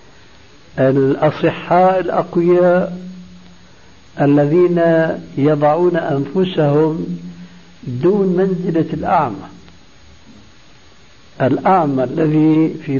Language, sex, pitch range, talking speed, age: Arabic, male, 130-160 Hz, 50 wpm, 60-79